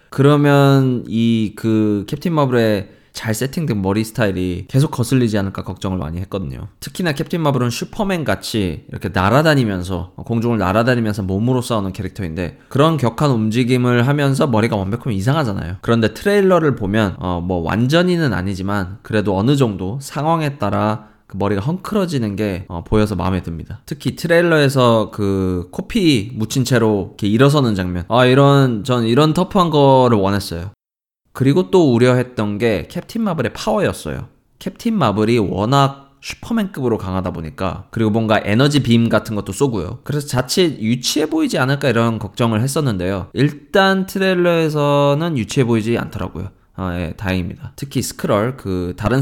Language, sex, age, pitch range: Korean, male, 20-39, 100-140 Hz